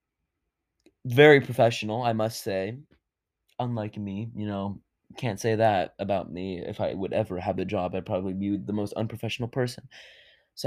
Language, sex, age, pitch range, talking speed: English, male, 20-39, 105-135 Hz, 165 wpm